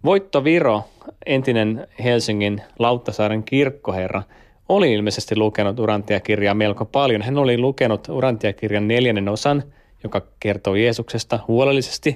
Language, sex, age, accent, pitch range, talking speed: Finnish, male, 20-39, native, 105-120 Hz, 115 wpm